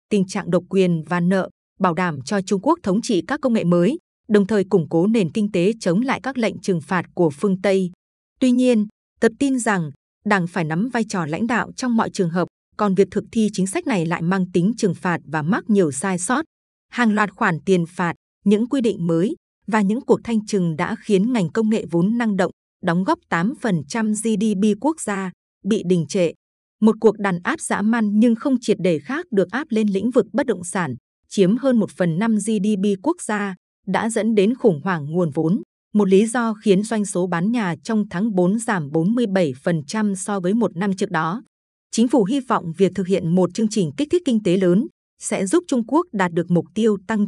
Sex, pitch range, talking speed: female, 180-225 Hz, 220 wpm